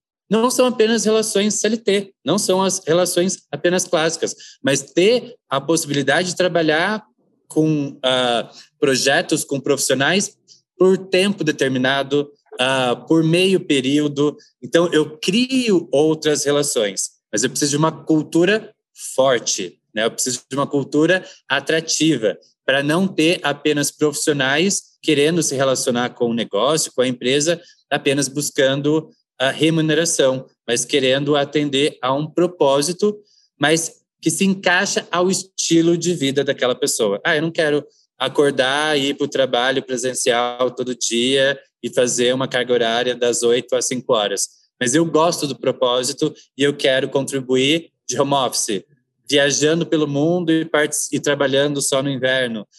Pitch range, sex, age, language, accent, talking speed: 135-175 Hz, male, 20-39, Portuguese, Brazilian, 145 wpm